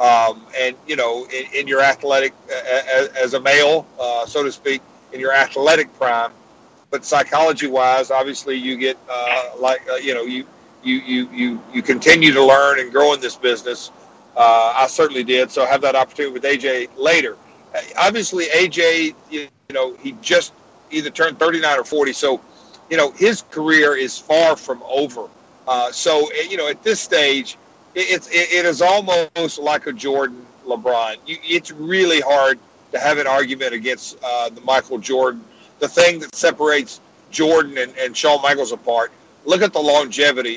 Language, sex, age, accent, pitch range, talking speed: English, male, 50-69, American, 130-160 Hz, 175 wpm